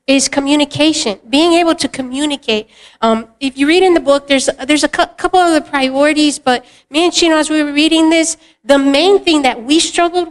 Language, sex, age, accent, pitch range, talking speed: English, female, 50-69, American, 255-305 Hz, 210 wpm